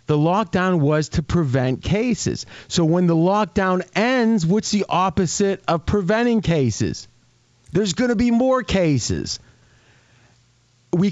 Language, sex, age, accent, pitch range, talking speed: English, male, 40-59, American, 125-175 Hz, 130 wpm